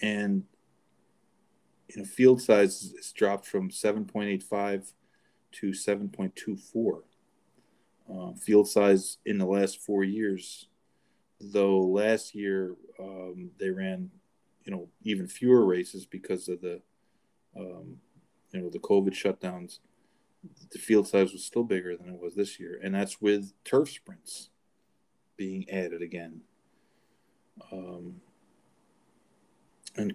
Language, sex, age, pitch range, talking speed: English, male, 40-59, 95-110 Hz, 115 wpm